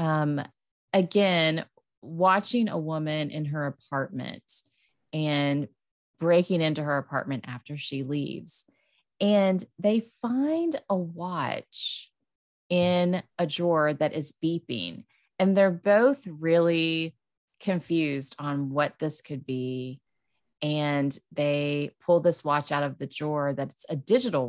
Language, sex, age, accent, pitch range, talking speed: English, female, 30-49, American, 140-175 Hz, 120 wpm